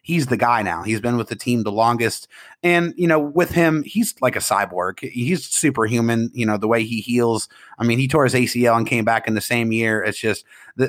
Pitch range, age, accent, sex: 115-140 Hz, 30-49, American, male